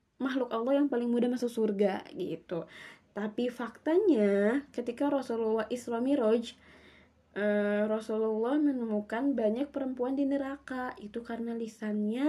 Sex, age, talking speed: female, 20-39, 115 wpm